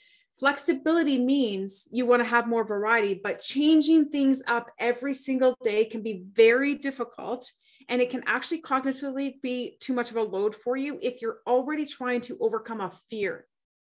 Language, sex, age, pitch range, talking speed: English, female, 30-49, 220-275 Hz, 175 wpm